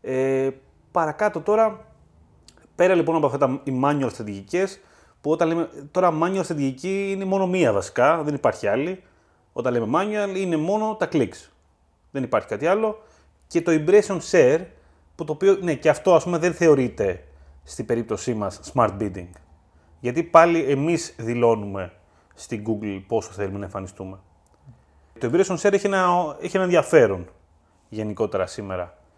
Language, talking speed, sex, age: Greek, 150 wpm, male, 30-49